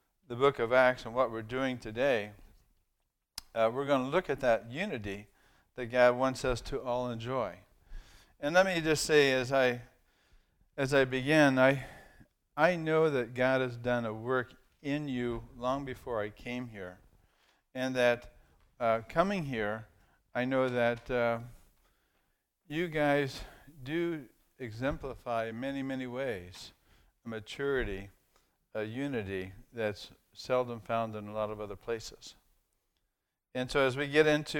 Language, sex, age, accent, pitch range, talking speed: English, male, 50-69, American, 115-140 Hz, 150 wpm